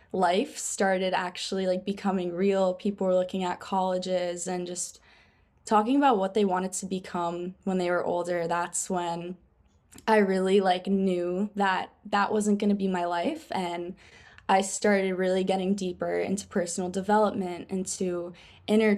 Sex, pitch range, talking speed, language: female, 175-200 Hz, 155 wpm, English